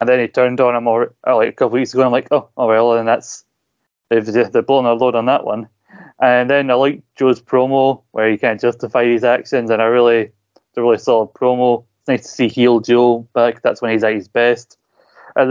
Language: English